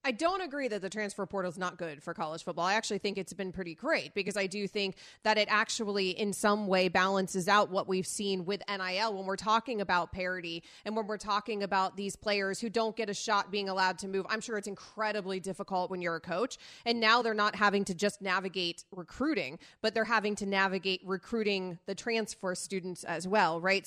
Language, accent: English, American